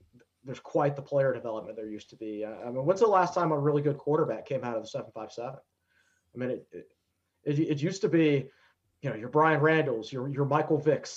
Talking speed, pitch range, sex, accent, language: 225 wpm, 130-160 Hz, male, American, English